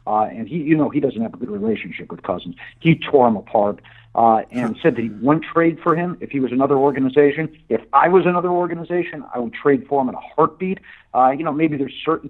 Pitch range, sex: 125-160 Hz, male